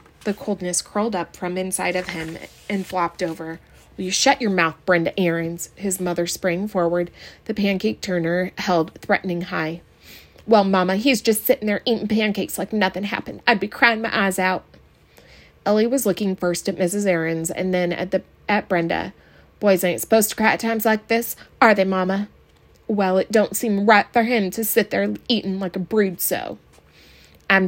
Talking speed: 185 wpm